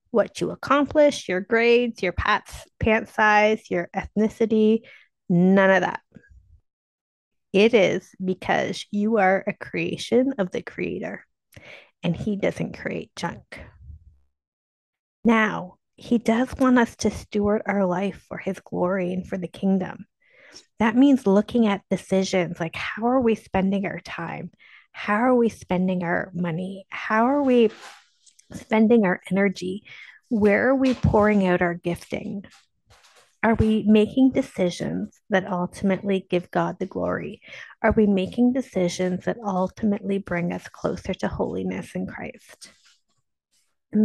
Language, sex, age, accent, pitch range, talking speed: English, female, 30-49, American, 185-225 Hz, 135 wpm